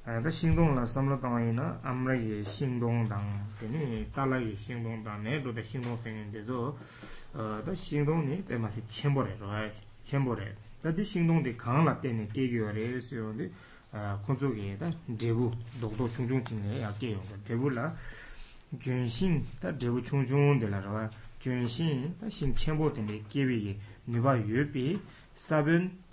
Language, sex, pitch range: English, male, 105-140 Hz